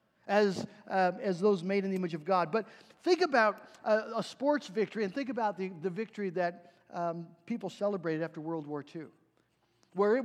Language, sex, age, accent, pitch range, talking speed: English, male, 50-69, American, 180-245 Hz, 195 wpm